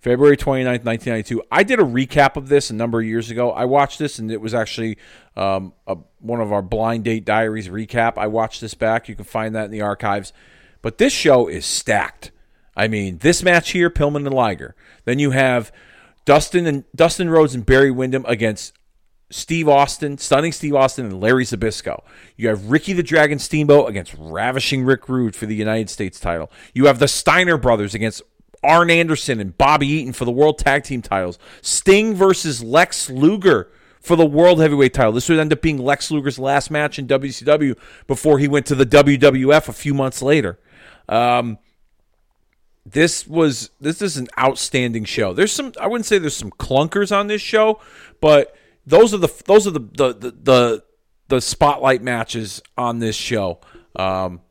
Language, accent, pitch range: English, American, 110-150 Hz